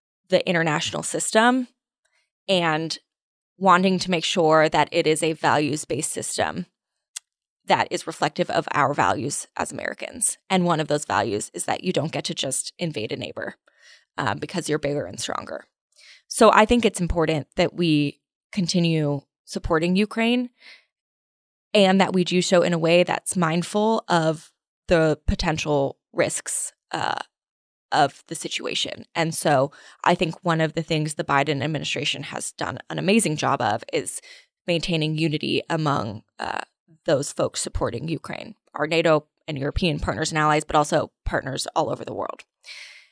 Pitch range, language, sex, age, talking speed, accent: 155-185 Hz, English, female, 20-39, 155 wpm, American